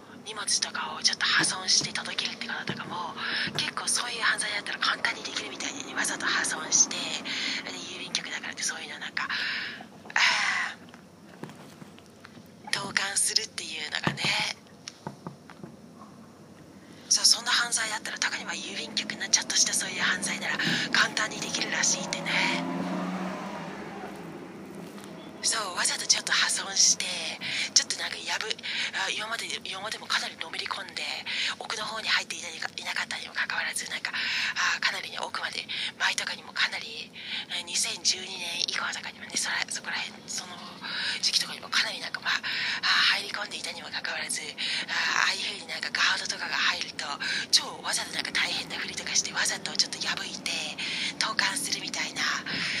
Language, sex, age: English, female, 40-59